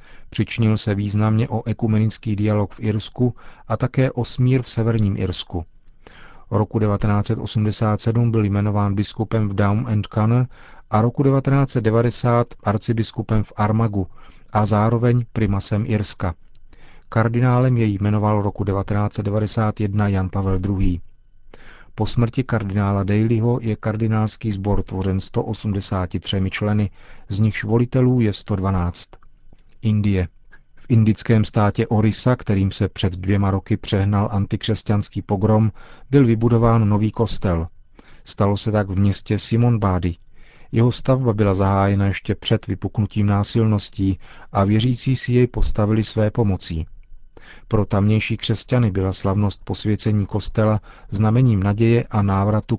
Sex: male